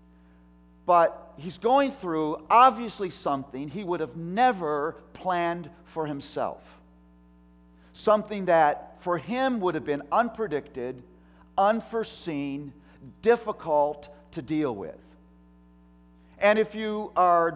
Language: English